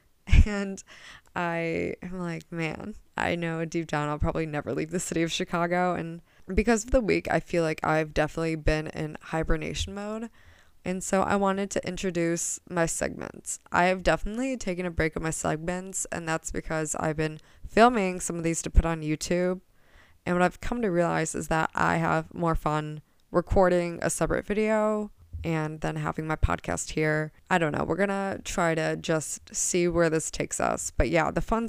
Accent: American